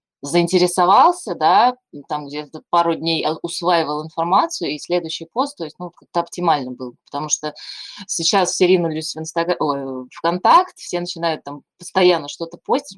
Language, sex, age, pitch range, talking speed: Russian, female, 20-39, 145-185 Hz, 150 wpm